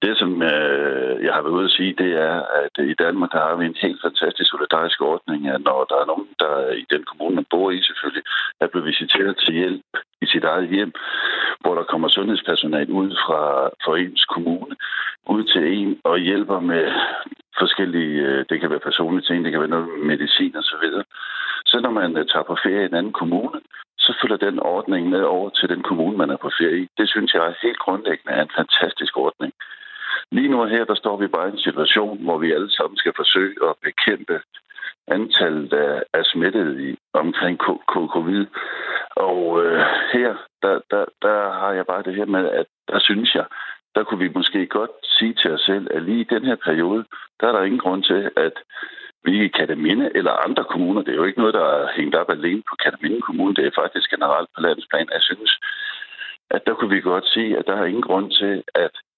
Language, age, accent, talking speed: Danish, 60-79, native, 210 wpm